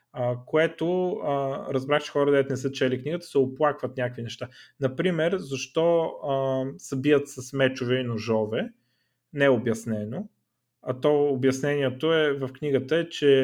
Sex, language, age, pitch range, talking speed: male, Bulgarian, 30-49, 115-140 Hz, 150 wpm